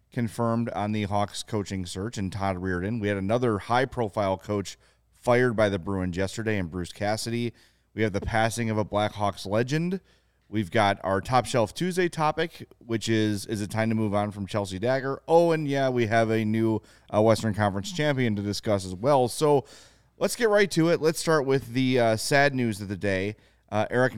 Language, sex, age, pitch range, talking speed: English, male, 30-49, 100-120 Hz, 205 wpm